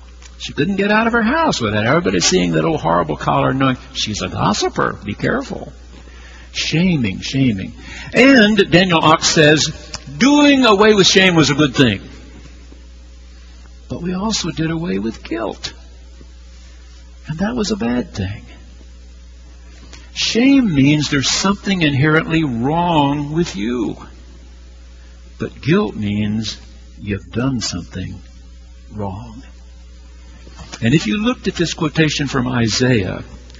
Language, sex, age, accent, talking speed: English, male, 60-79, American, 130 wpm